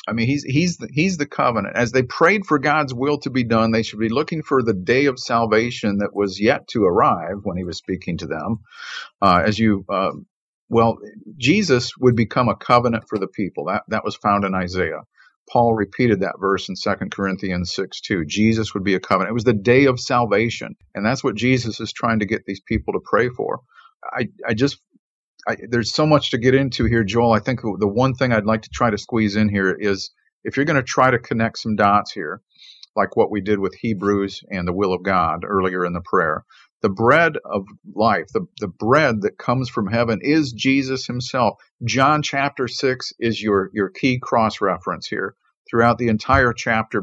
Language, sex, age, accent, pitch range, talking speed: English, male, 50-69, American, 105-130 Hz, 210 wpm